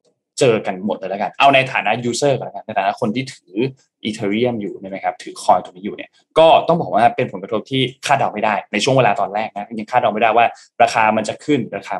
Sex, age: male, 10-29